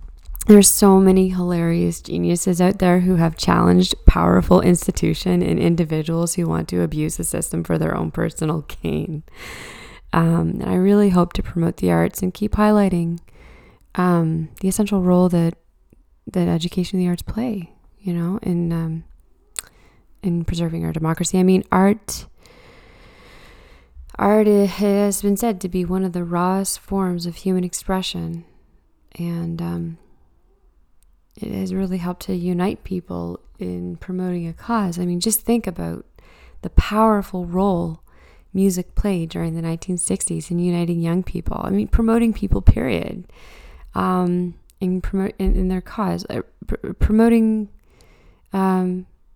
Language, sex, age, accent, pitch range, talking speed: English, female, 20-39, American, 165-195 Hz, 145 wpm